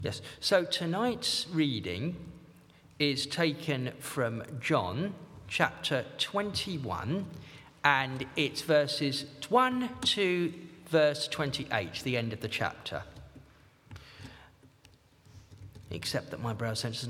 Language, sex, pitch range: English, male, 120-170 Hz